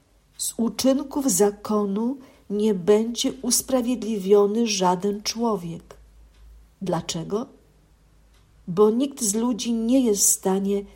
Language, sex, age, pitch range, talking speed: Polish, female, 50-69, 185-220 Hz, 95 wpm